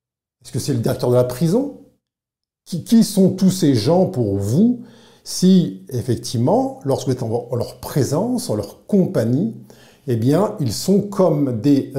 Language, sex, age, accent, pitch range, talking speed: French, male, 50-69, French, 125-175 Hz, 160 wpm